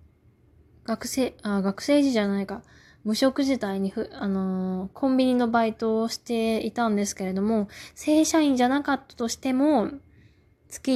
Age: 20-39